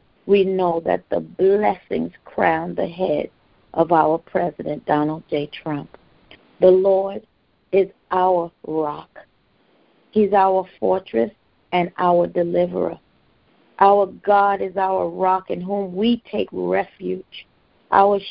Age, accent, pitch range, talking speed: 50-69, American, 180-210 Hz, 120 wpm